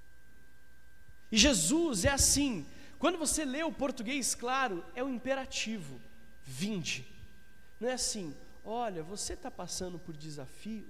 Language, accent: Portuguese, Brazilian